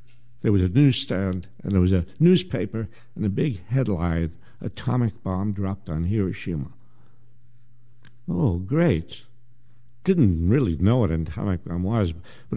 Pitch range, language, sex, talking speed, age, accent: 95-125 Hz, English, male, 140 wpm, 60-79, American